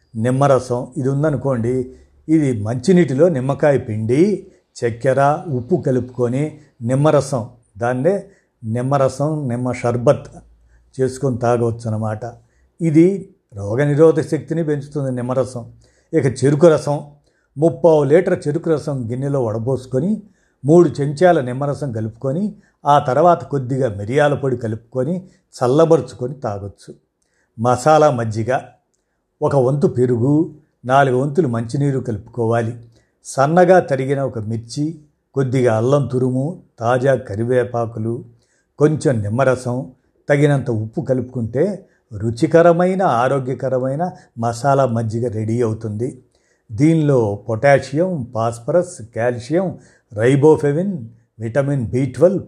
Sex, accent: male, native